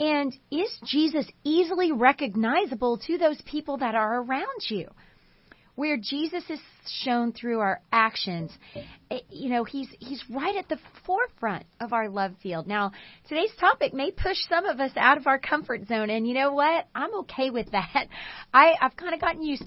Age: 30-49